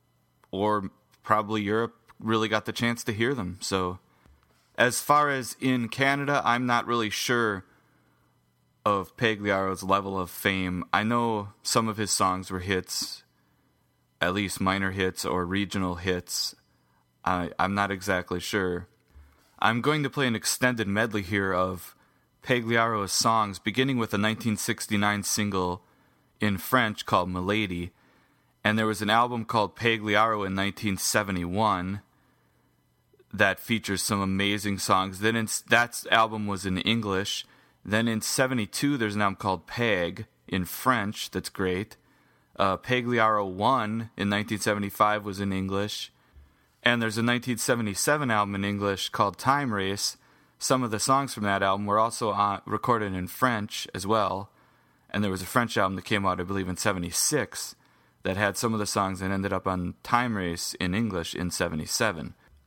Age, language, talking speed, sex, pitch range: 30-49, English, 155 wpm, male, 95-115 Hz